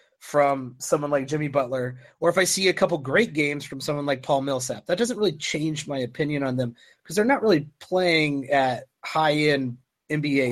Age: 30-49